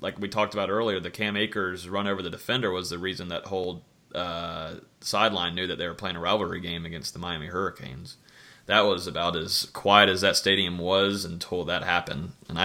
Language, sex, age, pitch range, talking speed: English, male, 30-49, 90-100 Hz, 210 wpm